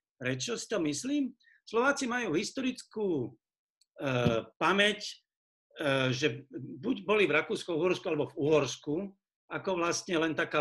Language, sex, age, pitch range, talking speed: Slovak, male, 60-79, 145-215 Hz, 125 wpm